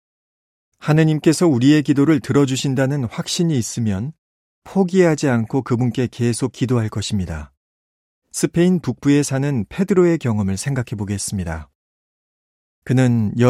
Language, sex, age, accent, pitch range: Korean, male, 40-59, native, 100-135 Hz